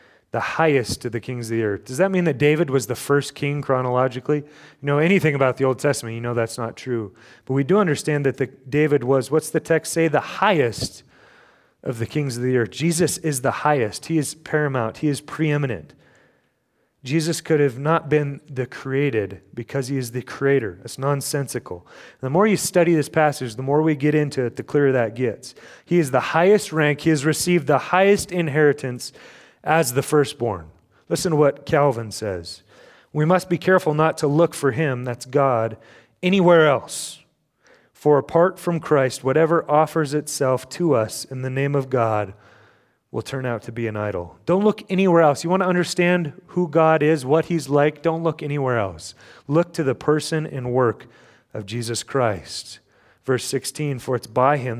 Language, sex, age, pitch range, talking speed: English, male, 30-49, 125-160 Hz, 195 wpm